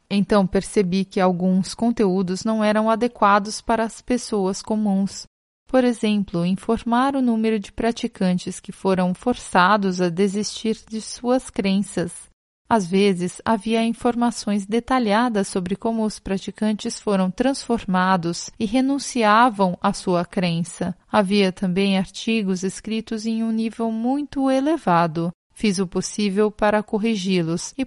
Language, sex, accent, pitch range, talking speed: Portuguese, female, Brazilian, 190-230 Hz, 125 wpm